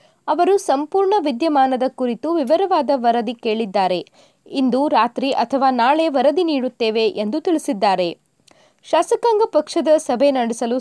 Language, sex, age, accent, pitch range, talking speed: Kannada, female, 20-39, native, 245-335 Hz, 105 wpm